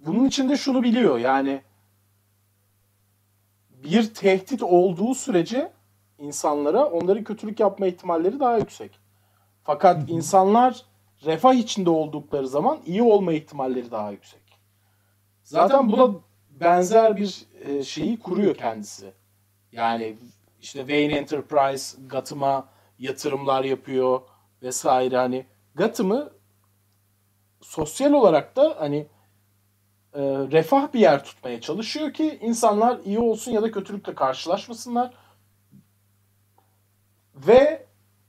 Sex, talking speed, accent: male, 95 wpm, native